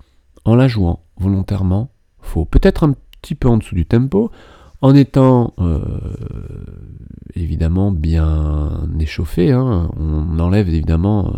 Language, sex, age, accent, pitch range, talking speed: French, male, 40-59, French, 80-115 Hz, 120 wpm